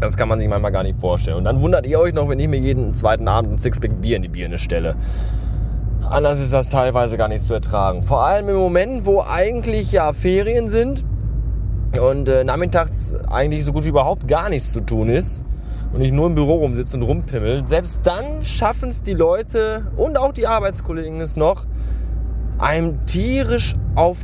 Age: 20-39